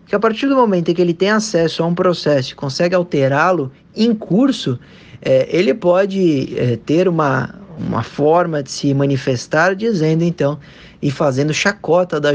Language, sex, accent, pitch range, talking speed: Portuguese, male, Brazilian, 145-185 Hz, 160 wpm